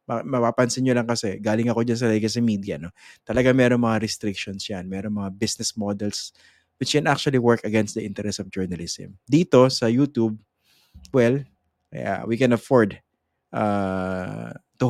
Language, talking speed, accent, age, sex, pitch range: English, 160 wpm, Filipino, 20-39, male, 100-125 Hz